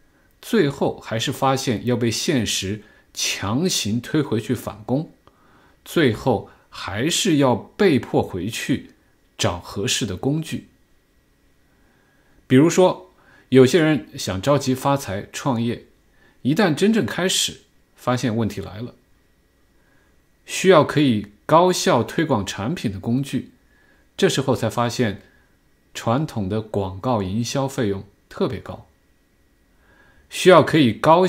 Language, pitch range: Chinese, 100-140 Hz